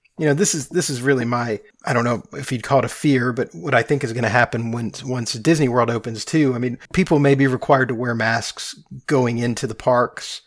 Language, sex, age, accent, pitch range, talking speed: English, male, 30-49, American, 120-140 Hz, 250 wpm